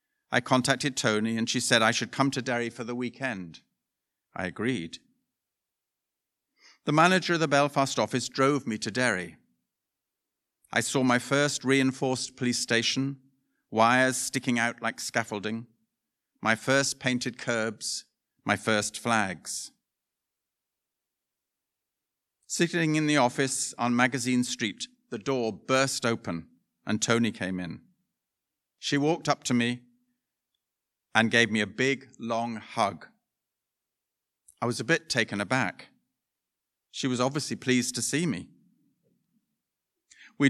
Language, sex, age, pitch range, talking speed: English, male, 50-69, 115-135 Hz, 125 wpm